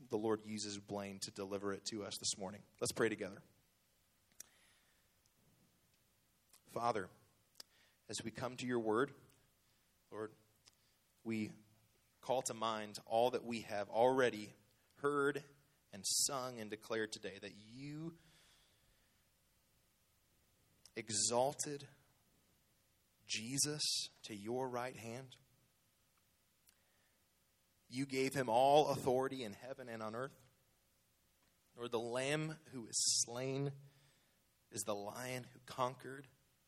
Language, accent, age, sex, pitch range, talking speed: English, American, 30-49, male, 105-135 Hz, 110 wpm